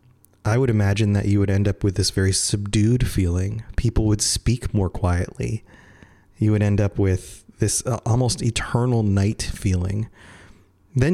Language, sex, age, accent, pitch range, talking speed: English, male, 30-49, American, 95-110 Hz, 155 wpm